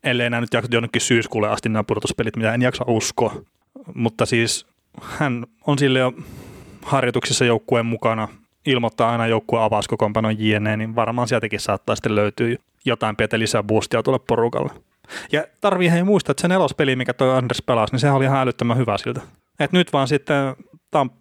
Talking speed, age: 175 wpm, 30-49